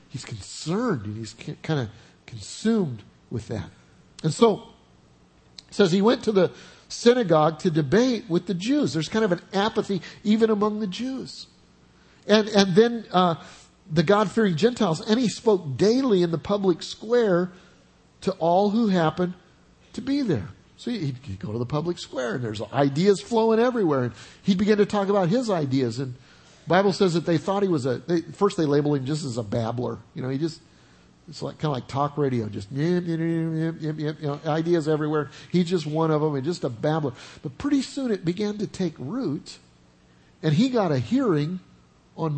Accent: American